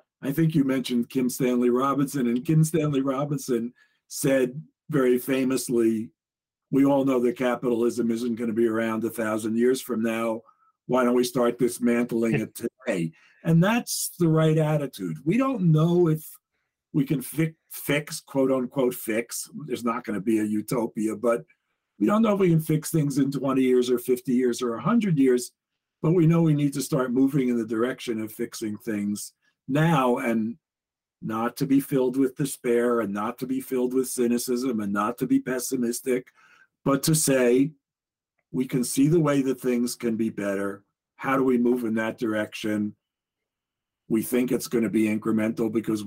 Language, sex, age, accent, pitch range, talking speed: English, male, 50-69, American, 115-140 Hz, 180 wpm